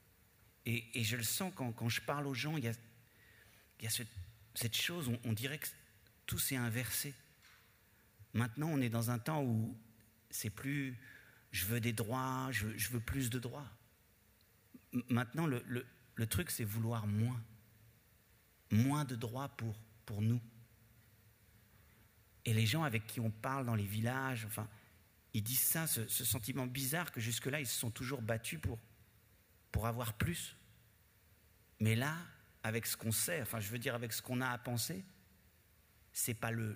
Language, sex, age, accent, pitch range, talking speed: French, male, 50-69, French, 110-125 Hz, 175 wpm